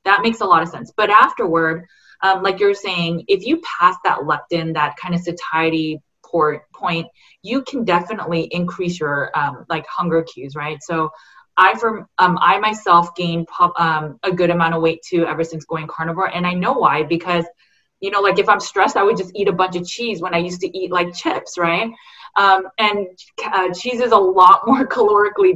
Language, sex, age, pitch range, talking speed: English, female, 20-39, 170-210 Hz, 200 wpm